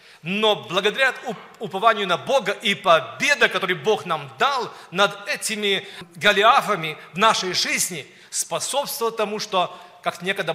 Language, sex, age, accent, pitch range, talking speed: Russian, male, 40-59, native, 185-225 Hz, 125 wpm